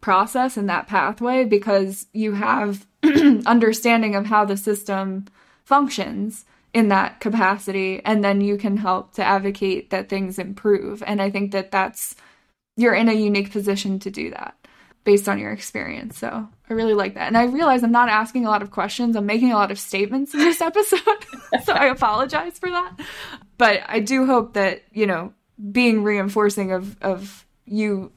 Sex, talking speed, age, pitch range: female, 180 wpm, 20-39, 195-225 Hz